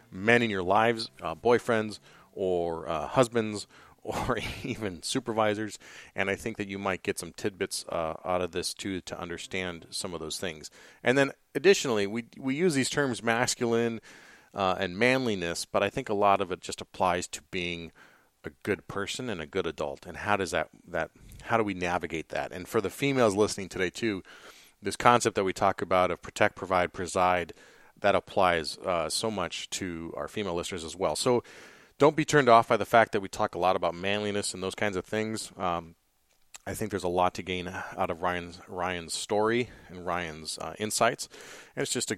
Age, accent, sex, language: 30-49, American, male, English